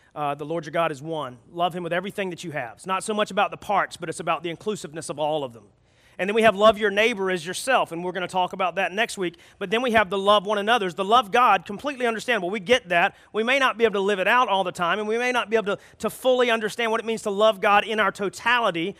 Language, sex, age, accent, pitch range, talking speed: English, male, 40-59, American, 160-215 Hz, 300 wpm